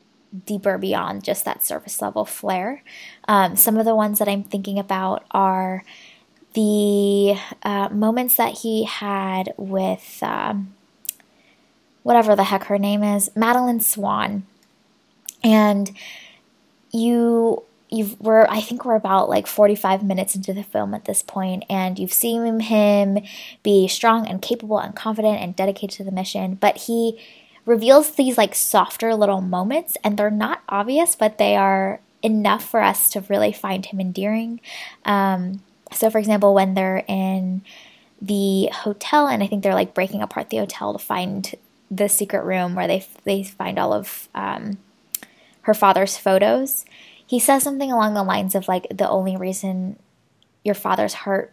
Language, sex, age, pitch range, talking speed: English, female, 10-29, 195-220 Hz, 155 wpm